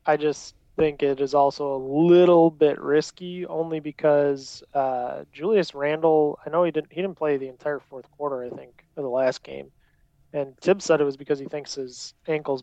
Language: English